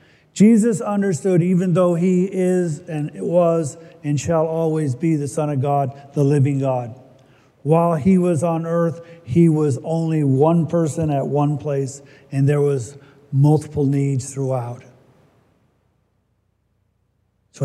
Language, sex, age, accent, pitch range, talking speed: English, male, 50-69, American, 125-160 Hz, 135 wpm